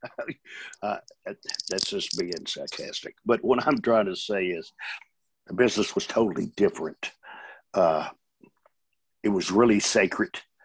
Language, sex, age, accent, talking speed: English, male, 60-79, American, 120 wpm